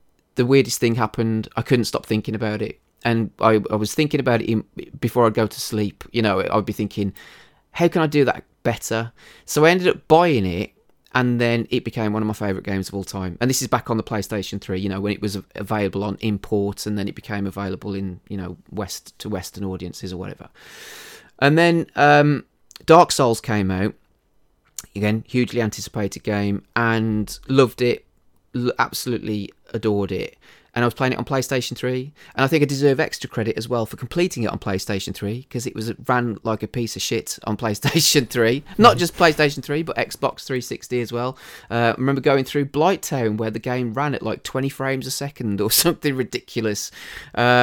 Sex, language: male, English